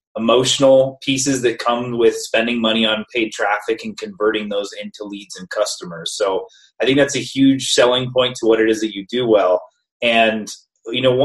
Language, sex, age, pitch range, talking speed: English, male, 30-49, 110-140 Hz, 190 wpm